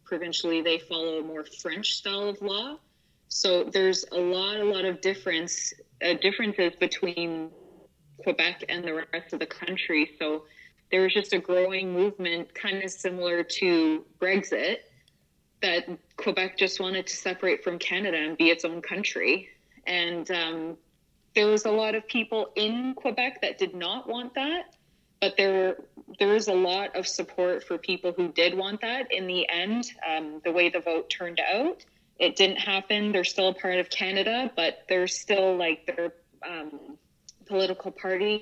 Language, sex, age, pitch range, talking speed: English, female, 20-39, 170-200 Hz, 170 wpm